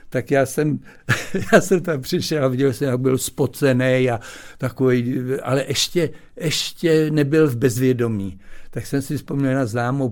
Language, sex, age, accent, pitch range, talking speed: Czech, male, 60-79, native, 110-135 Hz, 160 wpm